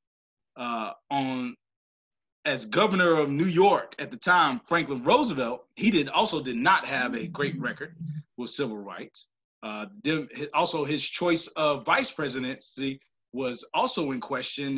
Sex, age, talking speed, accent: male, 30-49, 140 wpm, American